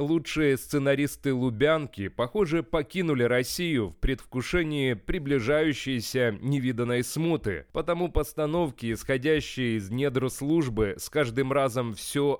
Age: 30-49